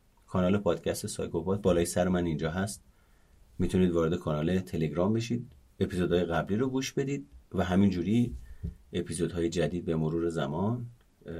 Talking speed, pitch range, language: 135 wpm, 85-105 Hz, Persian